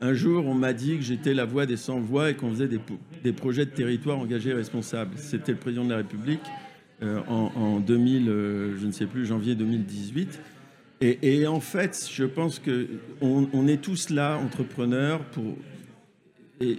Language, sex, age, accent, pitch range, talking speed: French, male, 50-69, French, 120-150 Hz, 195 wpm